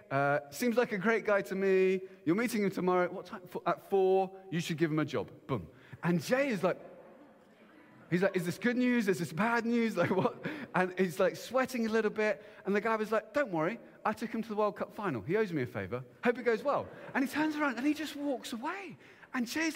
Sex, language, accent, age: male, English, British, 30-49